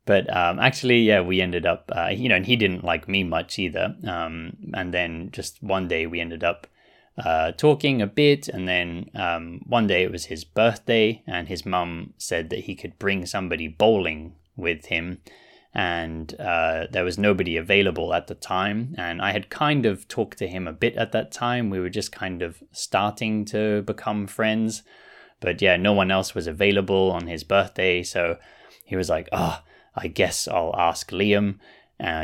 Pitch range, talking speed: 85-105 Hz, 190 wpm